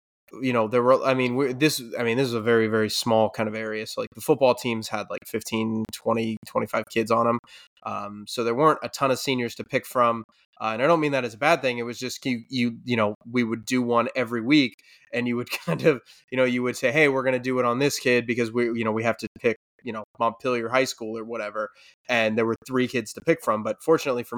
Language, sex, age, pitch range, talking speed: English, male, 20-39, 115-135 Hz, 275 wpm